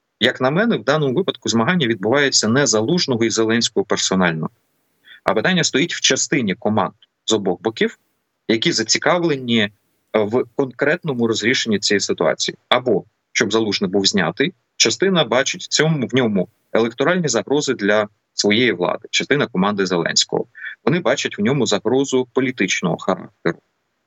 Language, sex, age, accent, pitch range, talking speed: Ukrainian, male, 30-49, native, 100-130 Hz, 135 wpm